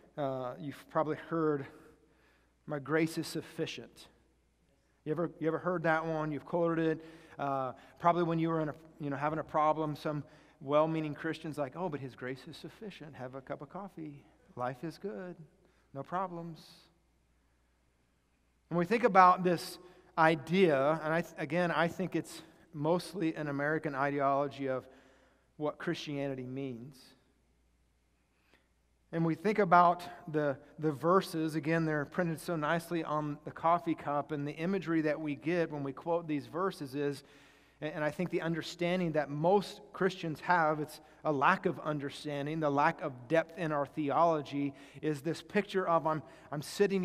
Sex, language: male, English